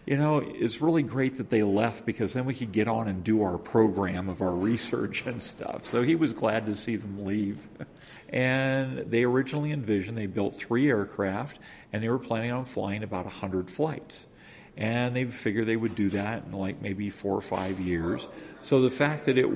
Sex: male